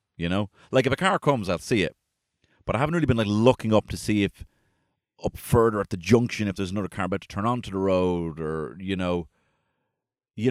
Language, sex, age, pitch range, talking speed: English, male, 30-49, 85-115 Hz, 230 wpm